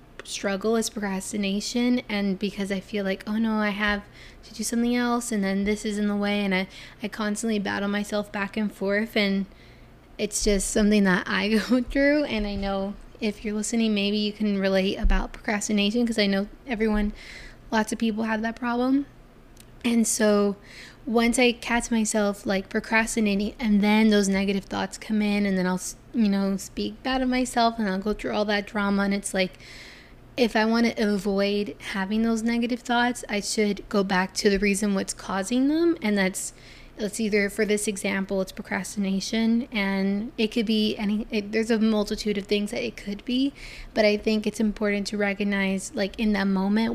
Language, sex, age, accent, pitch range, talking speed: English, female, 10-29, American, 200-225 Hz, 190 wpm